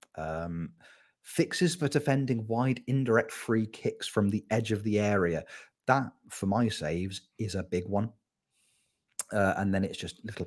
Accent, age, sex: British, 30-49, male